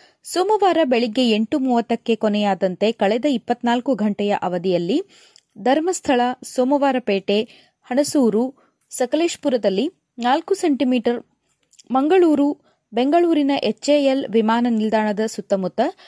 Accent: native